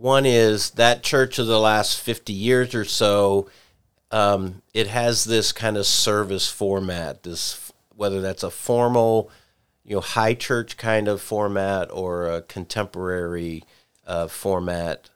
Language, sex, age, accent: English, male, 50-69, American